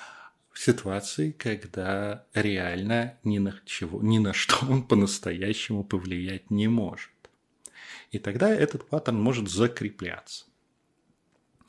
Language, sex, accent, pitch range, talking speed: Russian, male, native, 100-140 Hz, 100 wpm